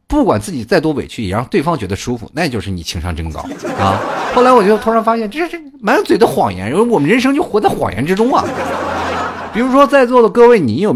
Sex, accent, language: male, native, Chinese